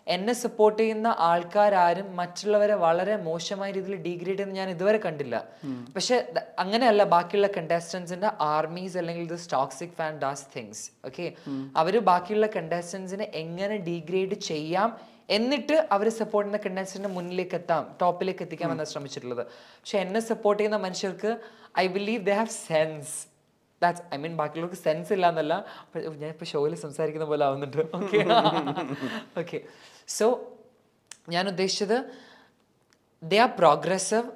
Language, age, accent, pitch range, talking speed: Malayalam, 20-39, native, 160-205 Hz, 115 wpm